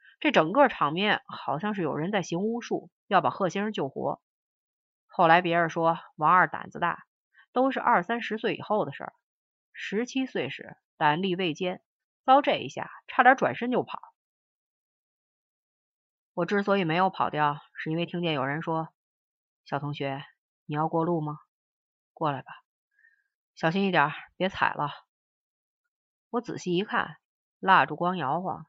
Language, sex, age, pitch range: Chinese, female, 30-49, 165-230 Hz